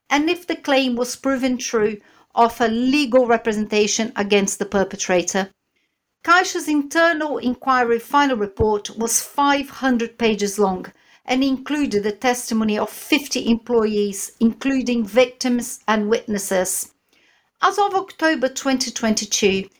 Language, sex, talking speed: English, female, 110 wpm